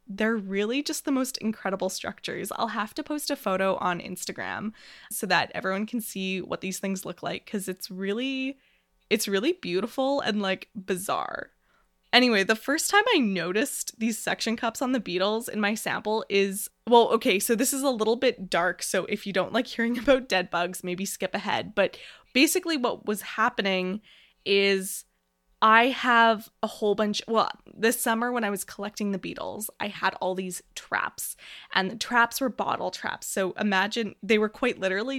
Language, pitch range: English, 190-235 Hz